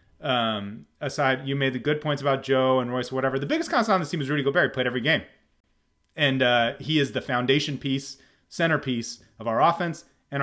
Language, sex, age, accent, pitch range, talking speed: English, male, 30-49, American, 125-170 Hz, 205 wpm